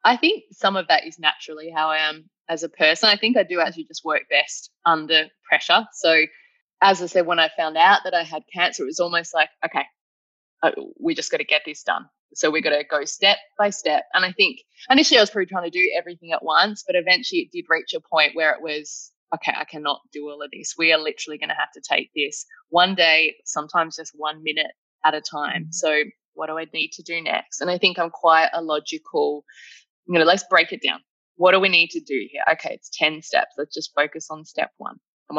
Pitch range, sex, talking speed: 155-200 Hz, female, 240 wpm